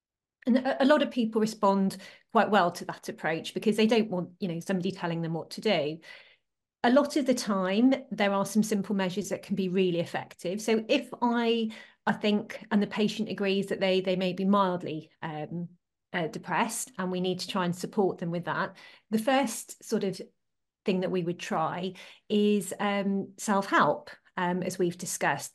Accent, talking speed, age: British, 190 wpm, 30-49